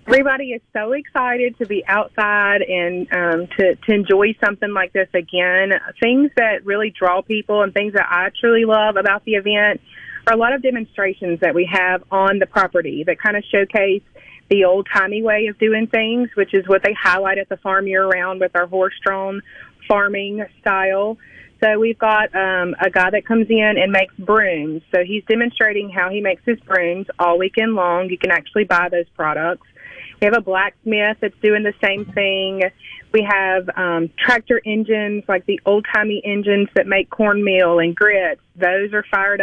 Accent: American